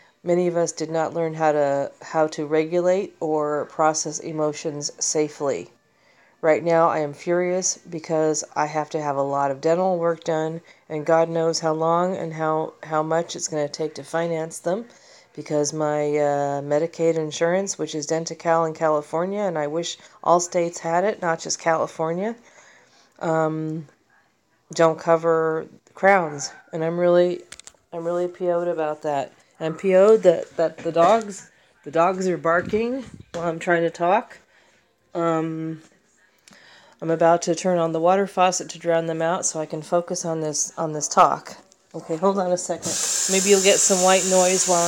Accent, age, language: American, 40-59, English